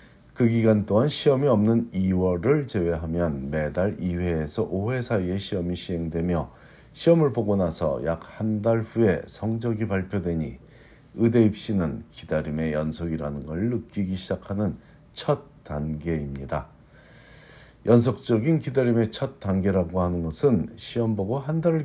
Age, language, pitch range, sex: 50-69, Korean, 85-115 Hz, male